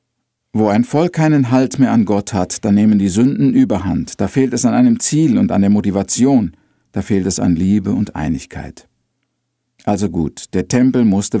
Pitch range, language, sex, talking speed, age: 105-135 Hz, German, male, 190 wpm, 50-69